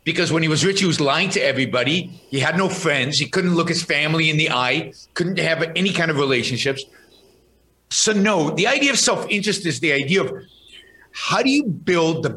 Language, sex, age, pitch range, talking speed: English, male, 50-69, 145-195 Hz, 210 wpm